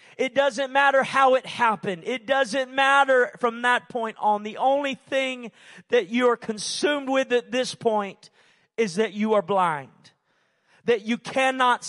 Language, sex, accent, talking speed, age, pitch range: English, male, American, 160 wpm, 40-59, 200-255 Hz